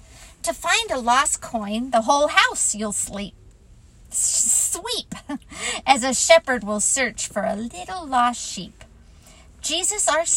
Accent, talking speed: American, 135 wpm